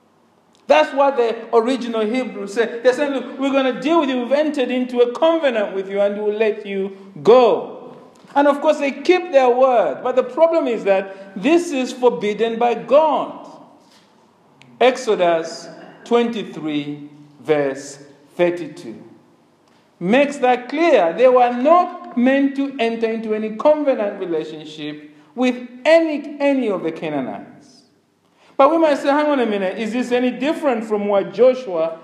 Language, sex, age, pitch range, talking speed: English, male, 50-69, 195-275 Hz, 155 wpm